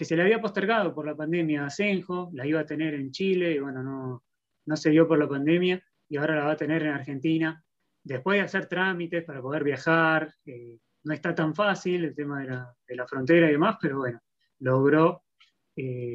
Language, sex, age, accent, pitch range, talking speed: Spanish, male, 20-39, Argentinian, 150-195 Hz, 215 wpm